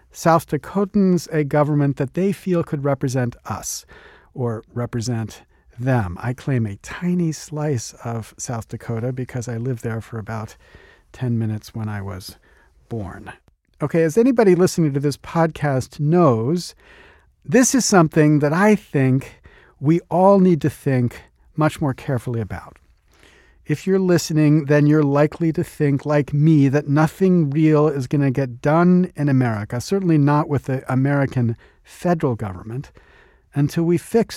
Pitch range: 125-170 Hz